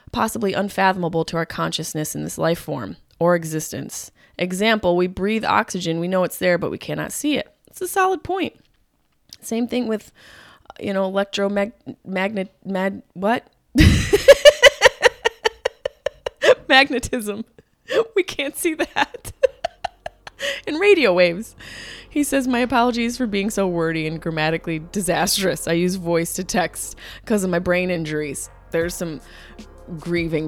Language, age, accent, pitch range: English, 20-39, American, 155-205 Hz